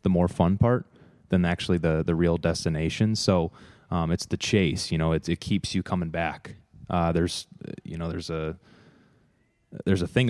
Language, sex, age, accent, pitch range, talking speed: English, male, 20-39, American, 85-100 Hz, 185 wpm